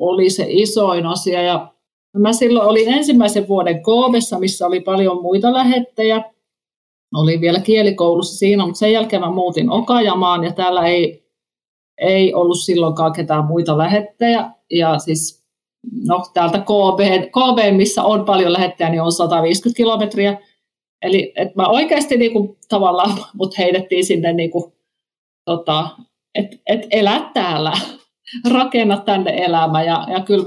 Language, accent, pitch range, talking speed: Finnish, native, 170-210 Hz, 135 wpm